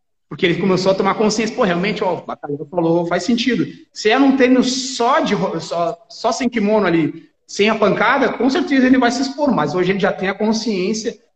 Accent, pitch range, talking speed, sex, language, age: Brazilian, 185-245 Hz, 215 wpm, male, Portuguese, 30-49